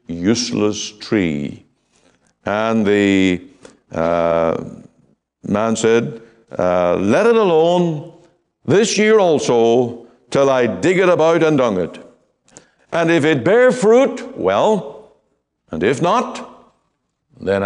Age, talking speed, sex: 60-79, 110 wpm, male